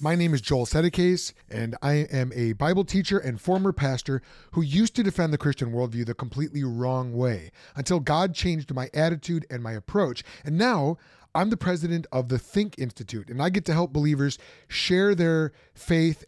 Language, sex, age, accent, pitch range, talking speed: English, male, 30-49, American, 120-160 Hz, 190 wpm